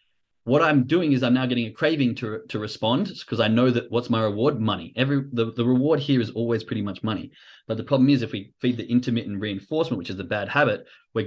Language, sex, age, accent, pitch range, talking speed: English, male, 20-39, Australian, 110-130 Hz, 245 wpm